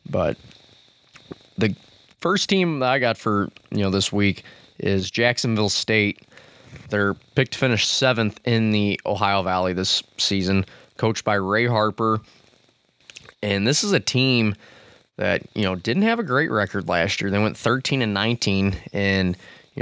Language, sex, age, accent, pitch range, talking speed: English, male, 20-39, American, 100-125 Hz, 155 wpm